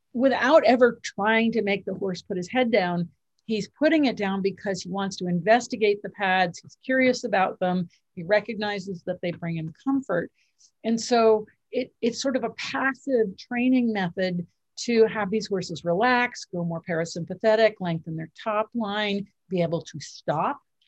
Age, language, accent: 50-69, English, American